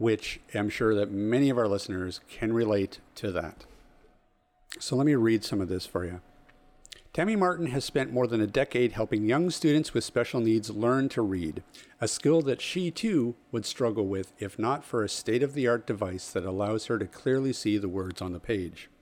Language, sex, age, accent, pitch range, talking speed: English, male, 50-69, American, 105-145 Hz, 200 wpm